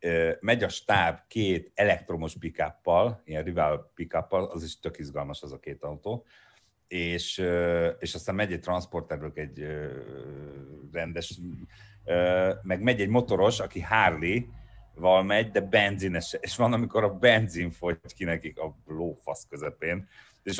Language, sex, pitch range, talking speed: Hungarian, male, 75-95 Hz, 130 wpm